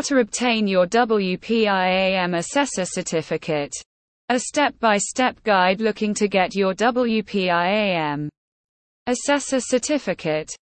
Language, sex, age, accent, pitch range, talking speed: English, female, 20-39, British, 180-245 Hz, 90 wpm